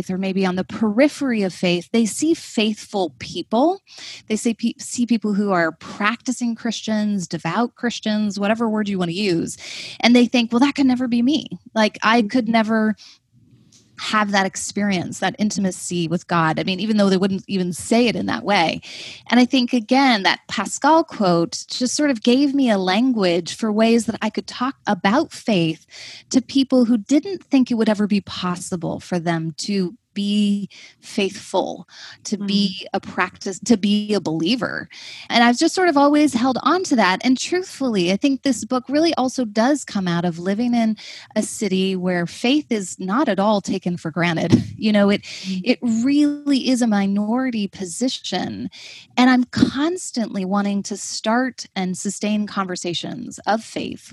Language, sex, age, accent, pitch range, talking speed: English, female, 20-39, American, 190-250 Hz, 175 wpm